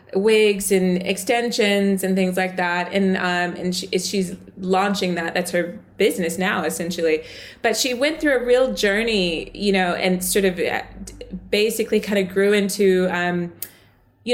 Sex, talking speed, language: female, 155 wpm, English